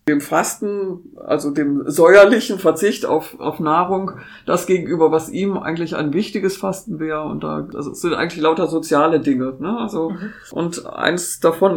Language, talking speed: German, 165 wpm